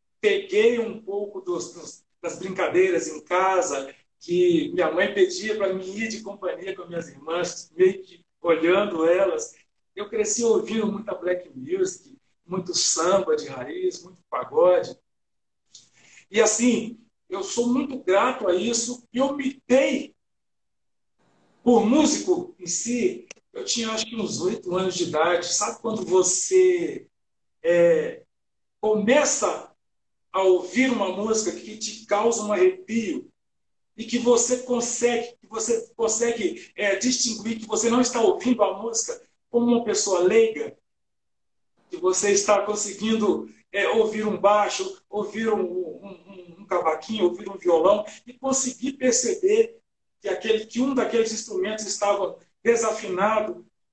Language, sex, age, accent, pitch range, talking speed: Portuguese, male, 60-79, Brazilian, 195-265 Hz, 135 wpm